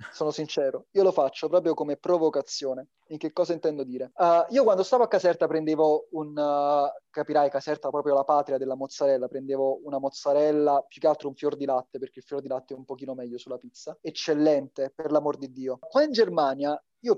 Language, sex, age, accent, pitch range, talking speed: Italian, male, 20-39, native, 140-200 Hz, 205 wpm